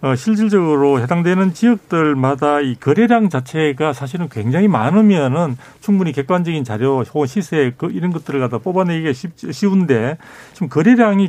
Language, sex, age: Korean, male, 40-59